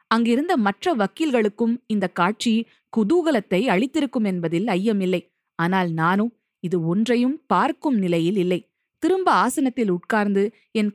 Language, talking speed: Tamil, 110 wpm